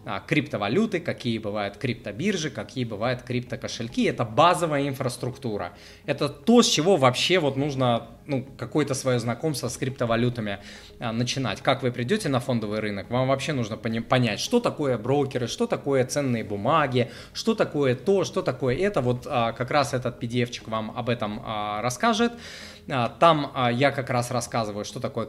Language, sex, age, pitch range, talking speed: Russian, male, 20-39, 115-140 Hz, 150 wpm